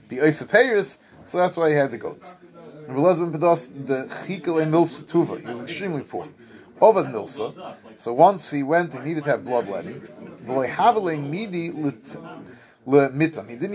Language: English